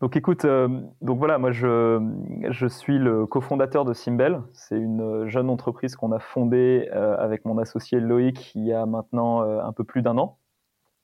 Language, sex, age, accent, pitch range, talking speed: French, male, 30-49, French, 115-135 Hz, 185 wpm